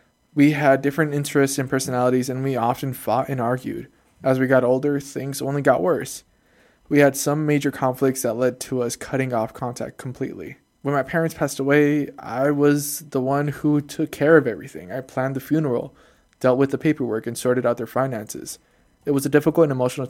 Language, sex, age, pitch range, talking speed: English, male, 20-39, 125-145 Hz, 195 wpm